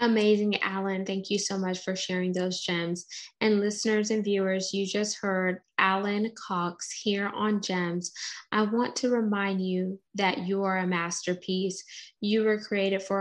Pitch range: 185-210 Hz